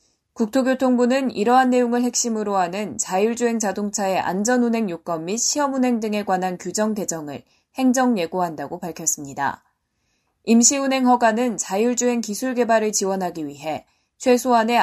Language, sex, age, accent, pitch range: Korean, female, 20-39, native, 190-245 Hz